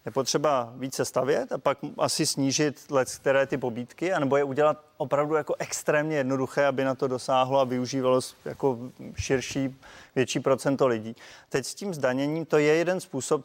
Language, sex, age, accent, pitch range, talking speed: Czech, male, 30-49, native, 125-145 Hz, 170 wpm